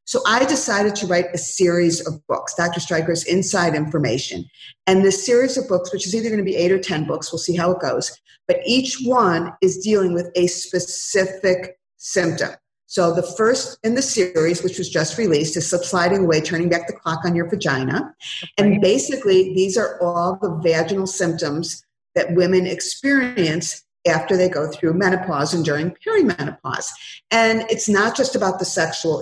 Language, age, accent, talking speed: English, 50-69, American, 180 wpm